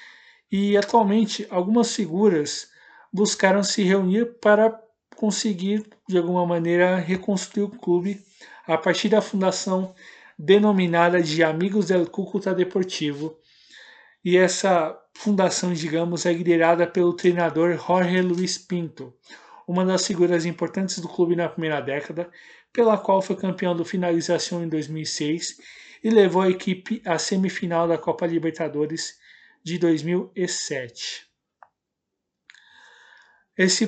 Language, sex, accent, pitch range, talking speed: Portuguese, male, Brazilian, 170-205 Hz, 115 wpm